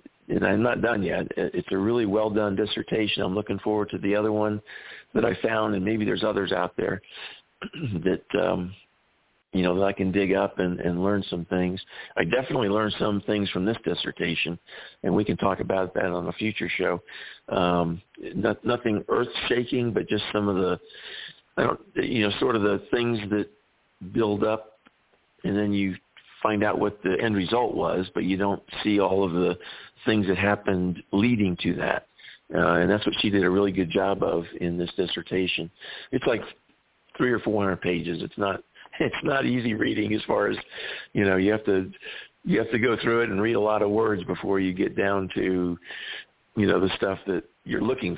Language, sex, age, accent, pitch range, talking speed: English, male, 50-69, American, 90-105 Hz, 200 wpm